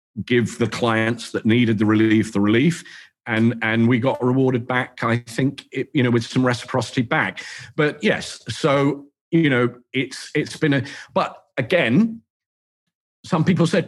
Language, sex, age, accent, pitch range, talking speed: English, male, 40-59, British, 115-150 Hz, 165 wpm